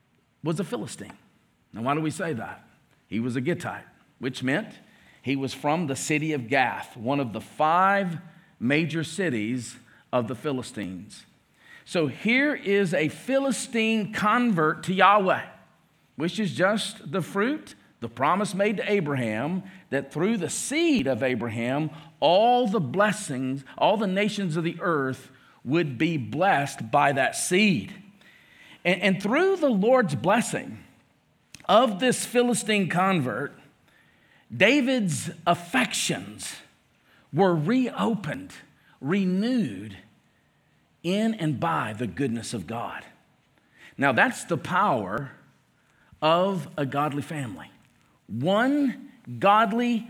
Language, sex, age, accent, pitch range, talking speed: English, male, 50-69, American, 145-220 Hz, 120 wpm